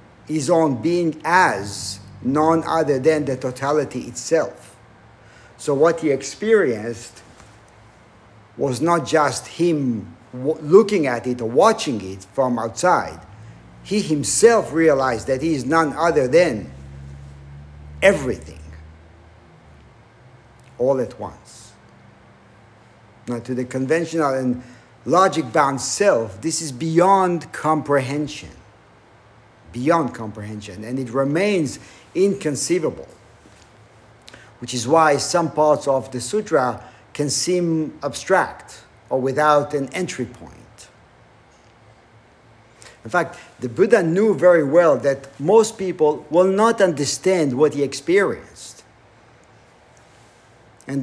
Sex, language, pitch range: male, English, 120-165 Hz